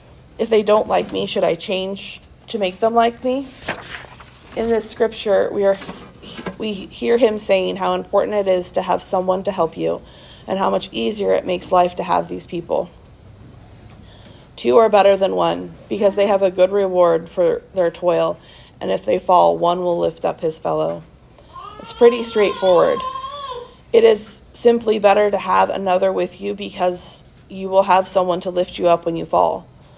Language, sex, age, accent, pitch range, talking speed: English, female, 30-49, American, 175-205 Hz, 180 wpm